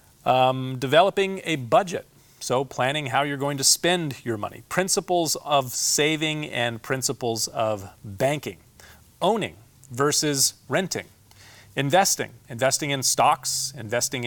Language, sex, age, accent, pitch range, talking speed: English, male, 40-59, American, 115-140 Hz, 120 wpm